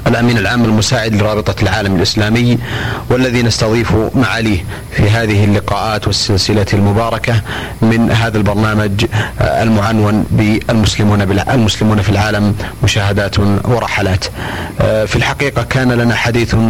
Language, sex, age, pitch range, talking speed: Arabic, male, 30-49, 105-115 Hz, 100 wpm